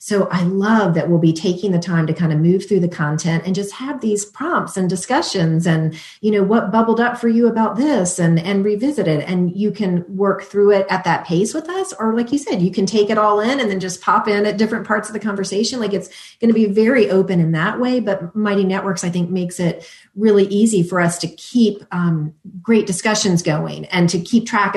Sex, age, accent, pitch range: female, 40-59, American, 165-210 Hz